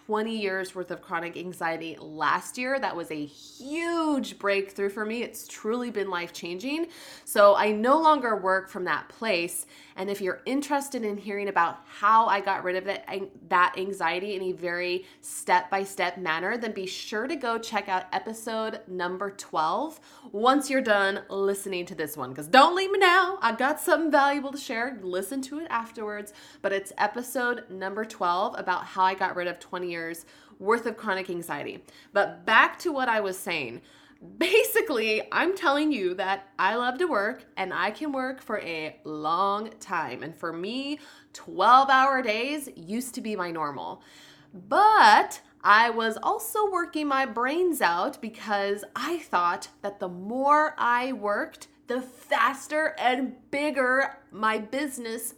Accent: American